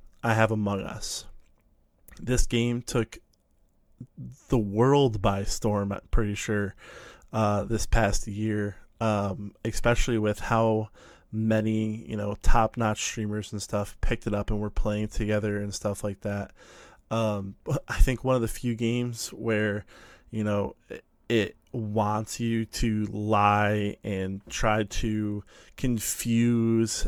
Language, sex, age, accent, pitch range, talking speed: English, male, 20-39, American, 100-115 Hz, 135 wpm